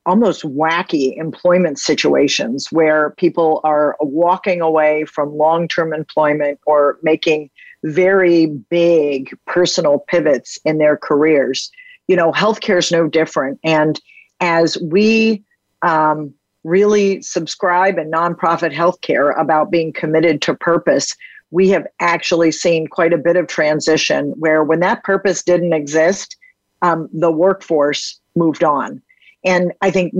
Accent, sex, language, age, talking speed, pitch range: American, female, English, 50-69, 125 wpm, 155-185 Hz